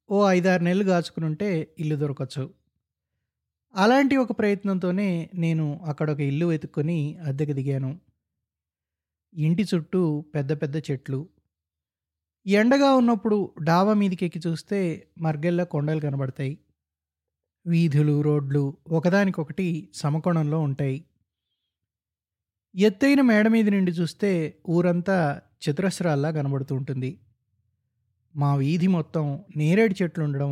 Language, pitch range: Telugu, 140-180 Hz